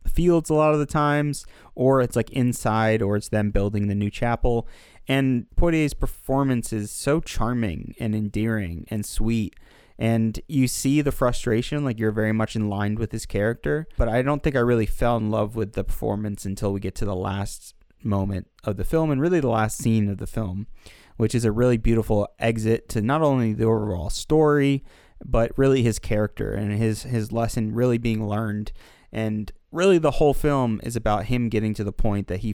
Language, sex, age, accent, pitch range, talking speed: English, male, 20-39, American, 100-120 Hz, 200 wpm